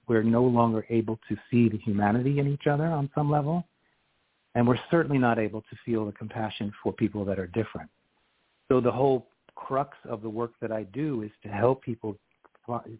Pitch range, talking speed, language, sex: 110-135 Hz, 195 wpm, English, male